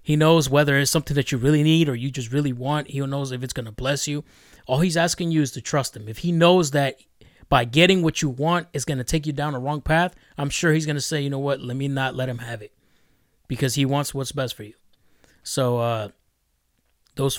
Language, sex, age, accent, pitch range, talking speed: English, male, 20-39, American, 125-150 Hz, 245 wpm